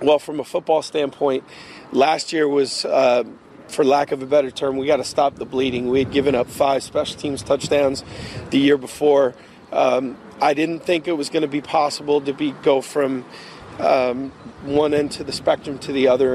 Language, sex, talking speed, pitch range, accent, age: English, male, 200 wpm, 135-155 Hz, American, 40-59